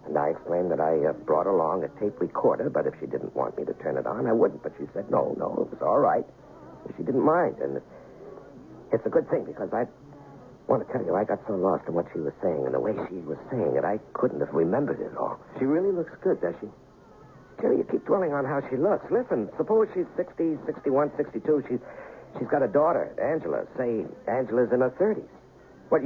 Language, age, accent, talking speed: English, 60-79, American, 240 wpm